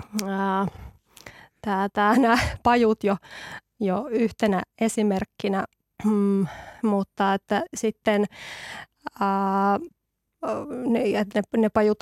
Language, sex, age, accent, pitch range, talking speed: Finnish, female, 20-39, native, 200-225 Hz, 80 wpm